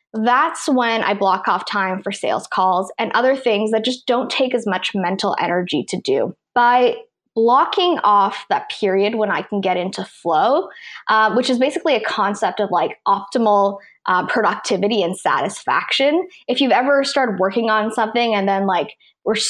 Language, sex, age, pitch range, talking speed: English, female, 20-39, 200-255 Hz, 175 wpm